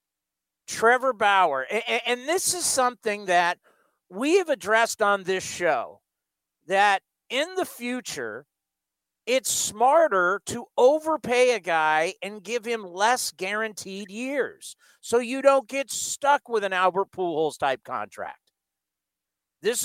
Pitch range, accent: 180-240 Hz, American